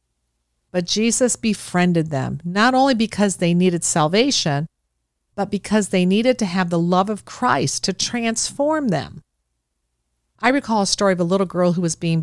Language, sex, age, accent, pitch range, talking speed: English, female, 50-69, American, 150-225 Hz, 165 wpm